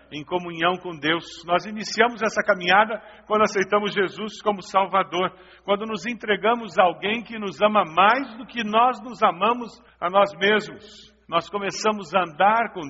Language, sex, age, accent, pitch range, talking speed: Portuguese, male, 60-79, Brazilian, 175-225 Hz, 165 wpm